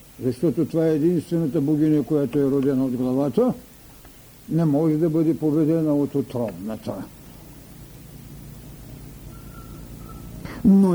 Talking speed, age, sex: 100 wpm, 60-79, male